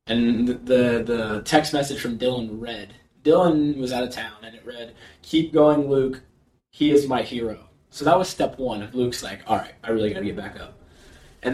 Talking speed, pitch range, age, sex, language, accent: 210 wpm, 110-130 Hz, 20-39, male, English, American